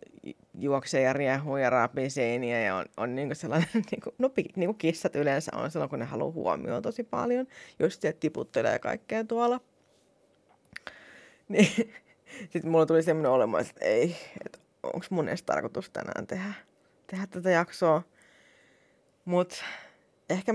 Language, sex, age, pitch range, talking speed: Finnish, female, 20-39, 140-185 Hz, 135 wpm